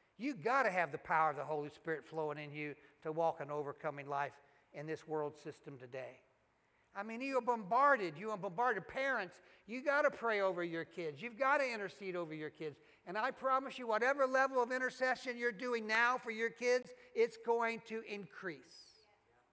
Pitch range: 165-260 Hz